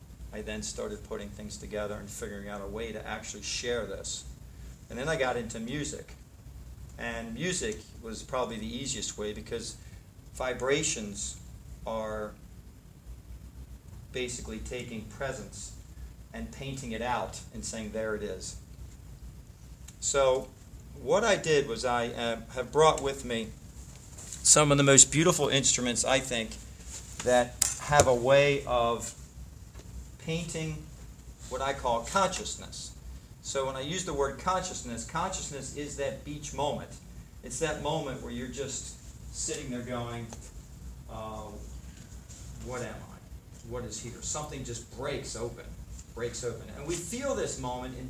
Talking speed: 140 wpm